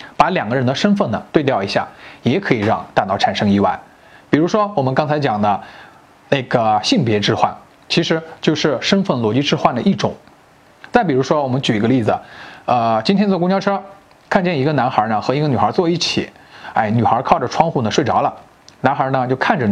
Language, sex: Chinese, male